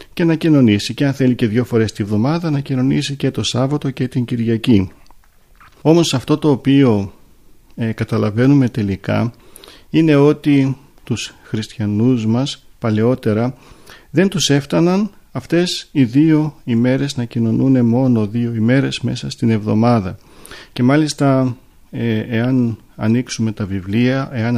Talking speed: 135 wpm